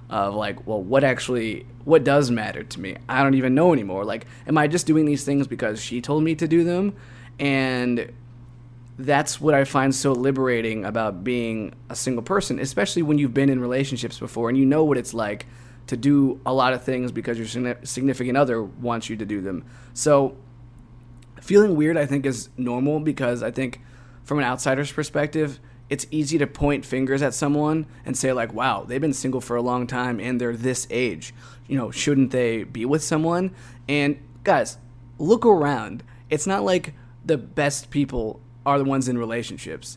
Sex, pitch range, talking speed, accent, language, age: male, 120-145 Hz, 190 wpm, American, English, 20-39